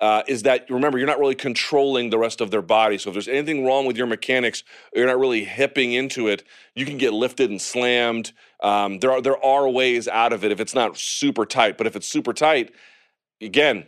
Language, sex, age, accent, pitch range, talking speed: English, male, 30-49, American, 110-135 Hz, 225 wpm